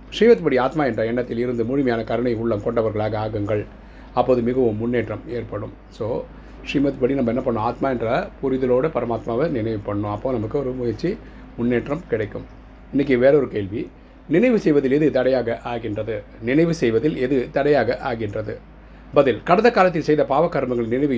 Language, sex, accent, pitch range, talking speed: Tamil, male, native, 115-140 Hz, 145 wpm